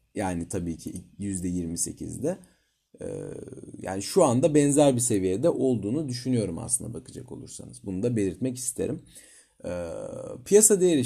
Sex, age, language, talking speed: male, 40-59, Turkish, 115 wpm